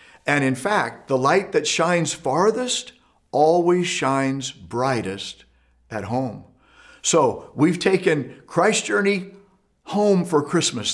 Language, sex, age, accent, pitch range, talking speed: English, male, 50-69, American, 135-185 Hz, 115 wpm